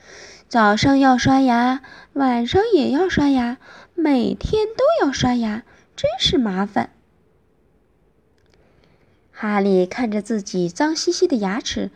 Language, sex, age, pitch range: Chinese, female, 20-39, 210-335 Hz